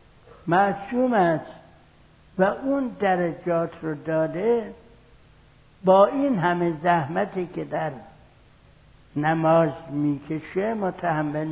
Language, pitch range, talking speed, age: Persian, 155-205 Hz, 80 wpm, 60-79